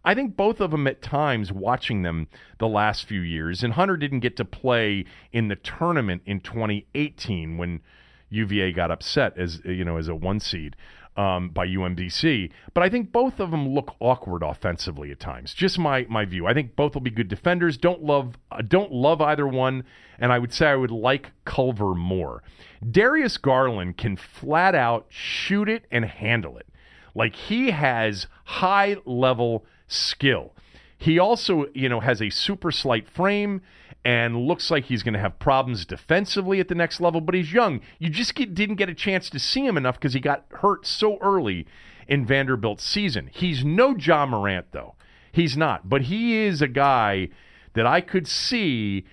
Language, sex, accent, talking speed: English, male, American, 185 wpm